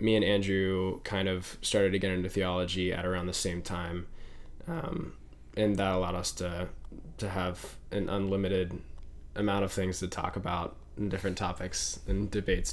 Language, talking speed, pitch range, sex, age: English, 170 wpm, 95-105 Hz, male, 10-29